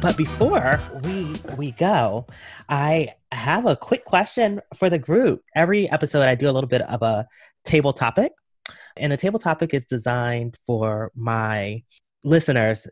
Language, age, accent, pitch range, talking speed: English, 20-39, American, 120-155 Hz, 155 wpm